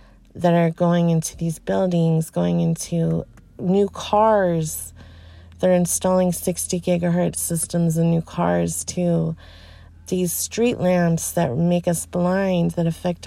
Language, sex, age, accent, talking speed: English, female, 30-49, American, 125 wpm